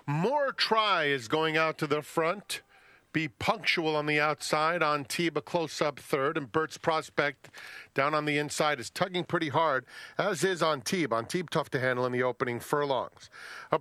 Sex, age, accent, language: male, 40-59, American, English